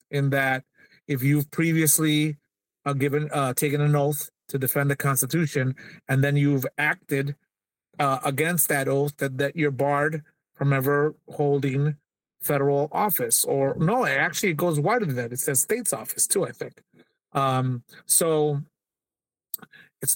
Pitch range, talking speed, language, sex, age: 140-155 Hz, 150 wpm, English, male, 30-49